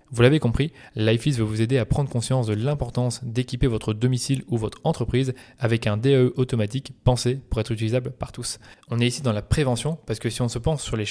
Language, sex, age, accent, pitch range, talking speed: French, male, 20-39, French, 115-140 Hz, 225 wpm